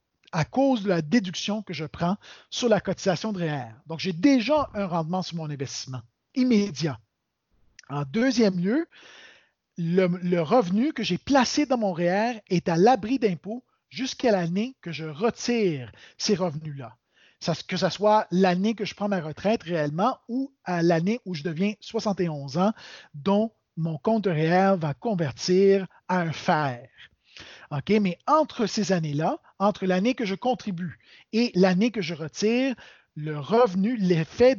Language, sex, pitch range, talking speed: French, male, 165-225 Hz, 155 wpm